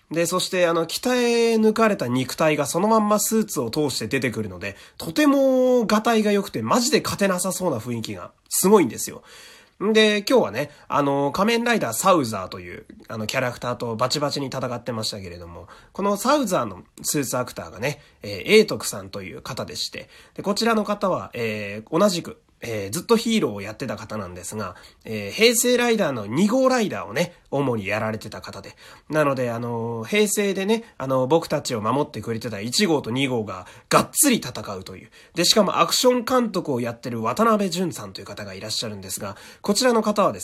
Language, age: Japanese, 30-49